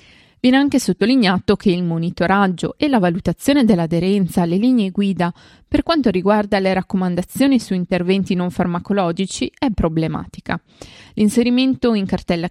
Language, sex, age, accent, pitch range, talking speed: Italian, female, 20-39, native, 175-230 Hz, 130 wpm